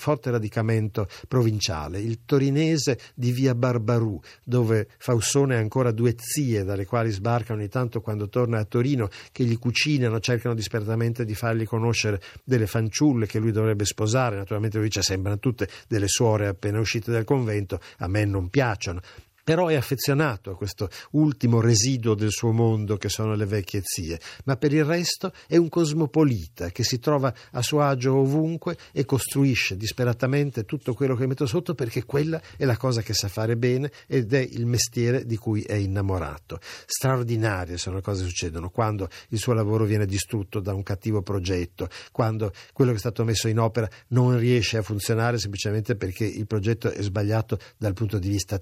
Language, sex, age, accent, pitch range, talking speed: Italian, male, 50-69, native, 105-130 Hz, 175 wpm